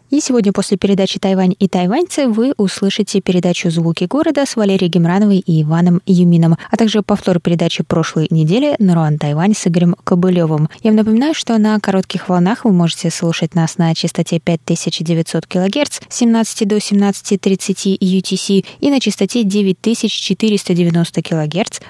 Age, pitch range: 20-39, 175-215 Hz